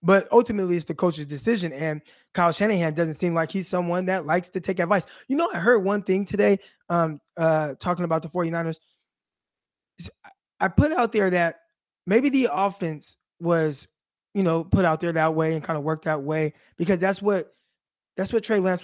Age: 20-39